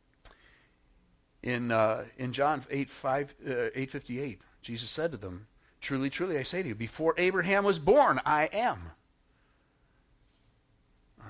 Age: 50-69